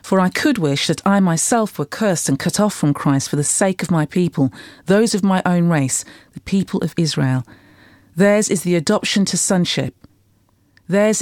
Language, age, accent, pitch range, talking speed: English, 40-59, British, 145-210 Hz, 195 wpm